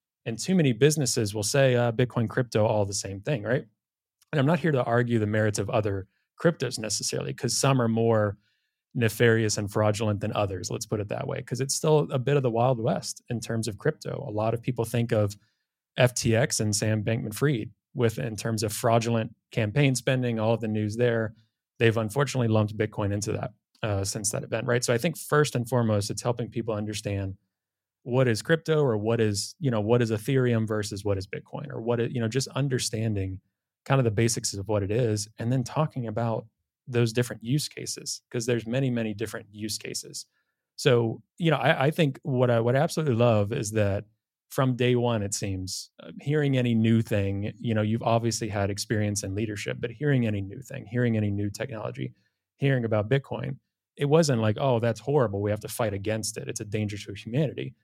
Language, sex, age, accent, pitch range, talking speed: English, male, 30-49, American, 105-130 Hz, 205 wpm